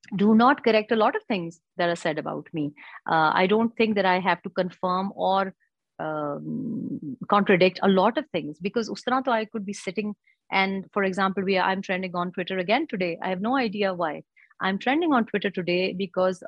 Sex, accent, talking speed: female, Indian, 200 wpm